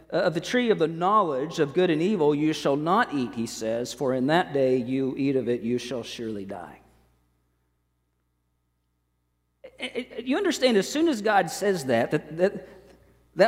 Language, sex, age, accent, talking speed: English, male, 50-69, American, 170 wpm